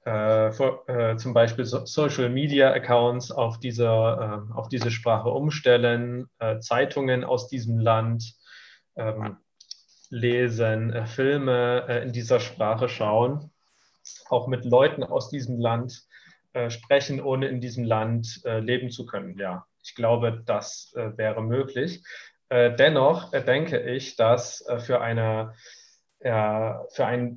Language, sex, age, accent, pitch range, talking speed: German, male, 20-39, German, 115-130 Hz, 130 wpm